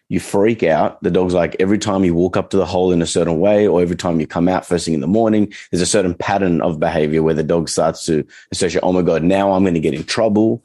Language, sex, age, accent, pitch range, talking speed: English, male, 30-49, Australian, 75-90 Hz, 285 wpm